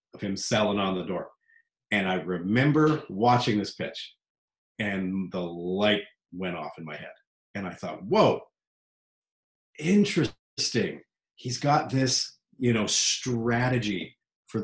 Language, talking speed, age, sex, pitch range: English, 130 wpm, 40-59, male, 100-130 Hz